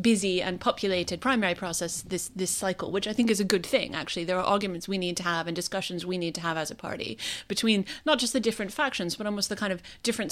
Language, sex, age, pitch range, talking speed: English, female, 30-49, 180-225 Hz, 255 wpm